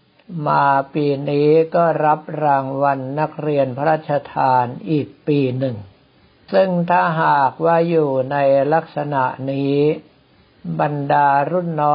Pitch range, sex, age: 130-160 Hz, male, 60-79